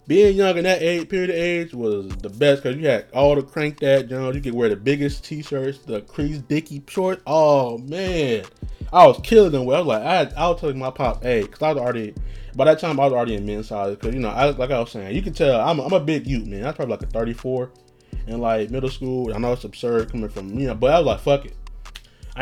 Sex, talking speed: male, 280 wpm